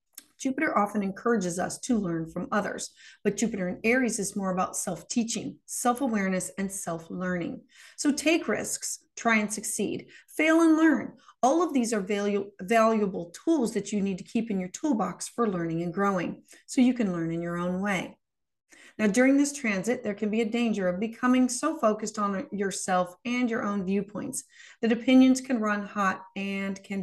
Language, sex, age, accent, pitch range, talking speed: English, female, 30-49, American, 200-260 Hz, 180 wpm